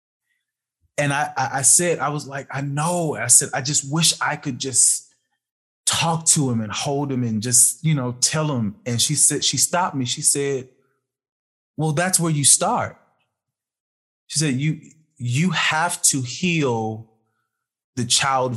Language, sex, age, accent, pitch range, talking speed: English, male, 20-39, American, 120-145 Hz, 165 wpm